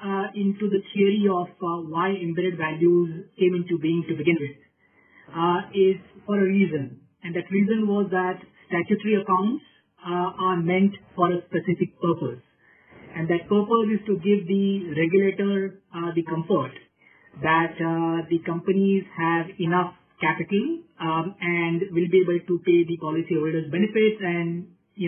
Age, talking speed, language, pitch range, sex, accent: 50-69, 155 wpm, English, 170-195 Hz, male, Indian